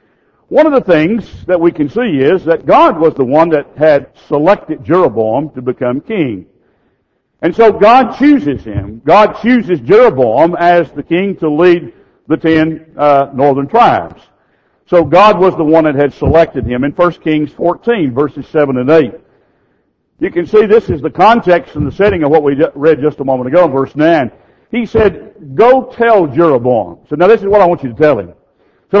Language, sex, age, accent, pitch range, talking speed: English, male, 60-79, American, 155-220 Hz, 195 wpm